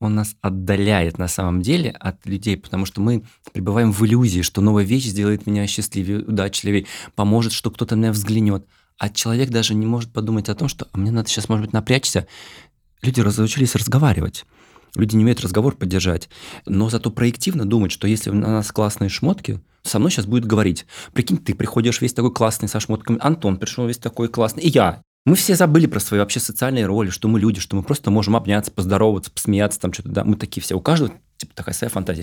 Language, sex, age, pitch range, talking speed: Russian, male, 20-39, 100-120 Hz, 205 wpm